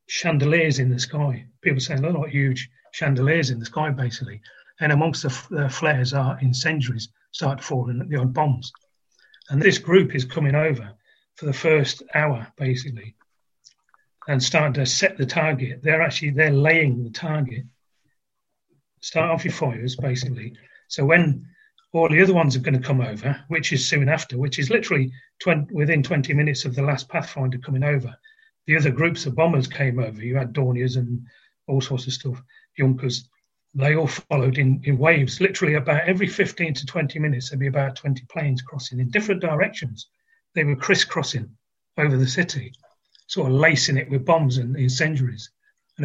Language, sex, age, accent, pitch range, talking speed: English, male, 40-59, British, 130-155 Hz, 180 wpm